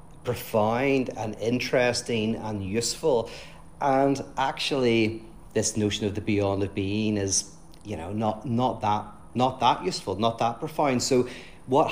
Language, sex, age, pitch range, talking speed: English, male, 40-59, 105-130 Hz, 140 wpm